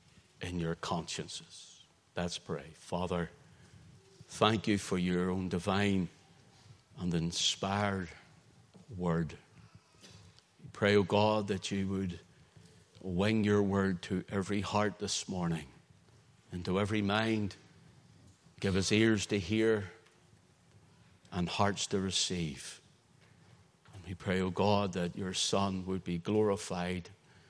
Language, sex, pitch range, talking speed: English, male, 90-105 Hz, 115 wpm